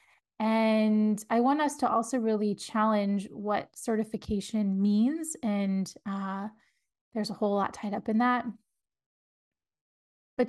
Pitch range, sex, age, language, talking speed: 205-245 Hz, female, 20-39, English, 125 wpm